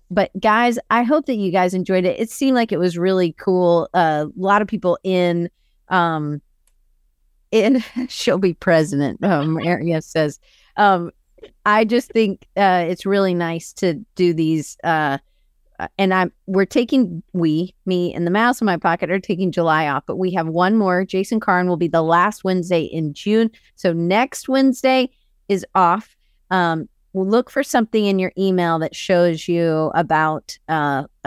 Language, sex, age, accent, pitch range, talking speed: English, female, 40-59, American, 160-205 Hz, 170 wpm